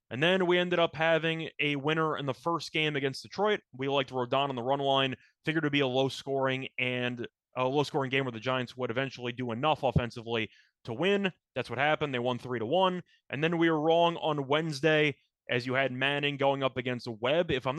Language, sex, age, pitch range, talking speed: English, male, 20-39, 125-160 Hz, 230 wpm